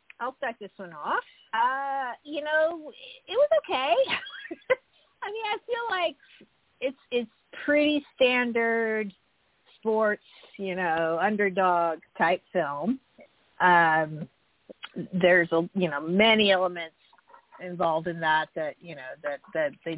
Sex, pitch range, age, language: female, 165-225 Hz, 40-59, English